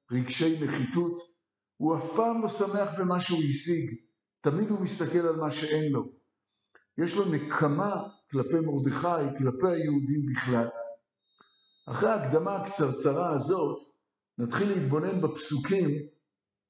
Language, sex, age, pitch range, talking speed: Hebrew, male, 50-69, 135-195 Hz, 115 wpm